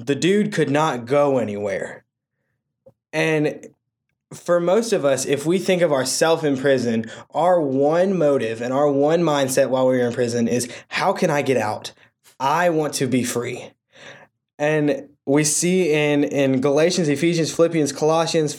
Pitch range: 140-170 Hz